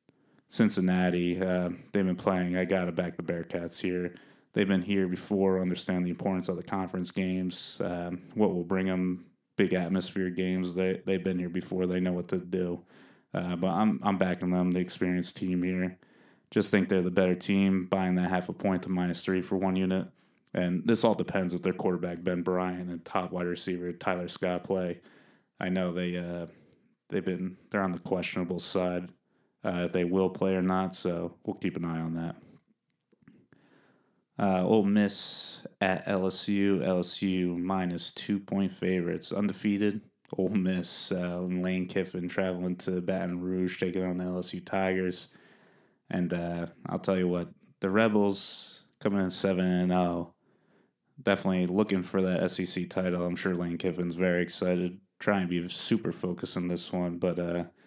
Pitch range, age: 90-95 Hz, 20-39